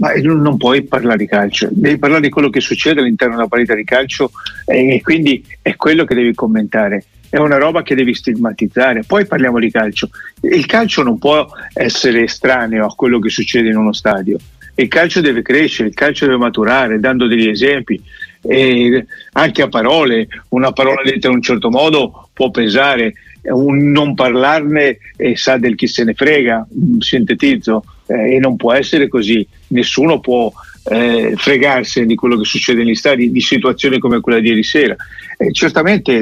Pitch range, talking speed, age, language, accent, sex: 115-135 Hz, 180 wpm, 50-69, Italian, native, male